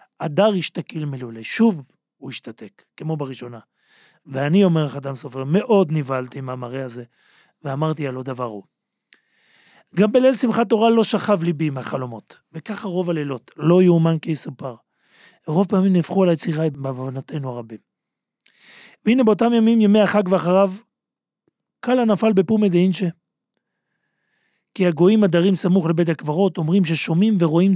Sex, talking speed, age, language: male, 135 wpm, 40-59, Hebrew